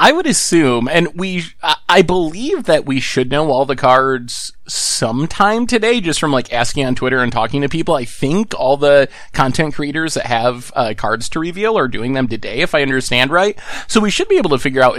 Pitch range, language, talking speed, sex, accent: 125-180 Hz, English, 215 wpm, male, American